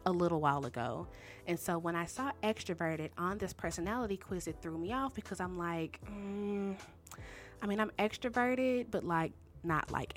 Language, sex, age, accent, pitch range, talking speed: English, female, 20-39, American, 155-205 Hz, 175 wpm